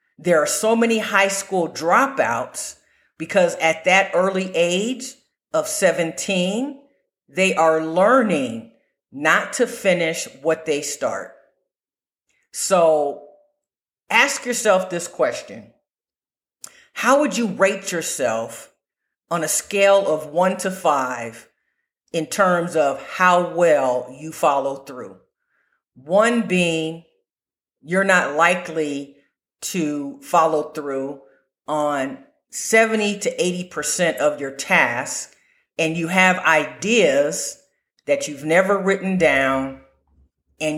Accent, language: American, English